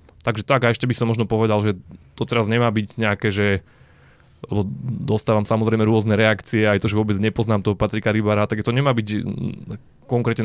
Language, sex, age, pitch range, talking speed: Slovak, male, 20-39, 105-115 Hz, 185 wpm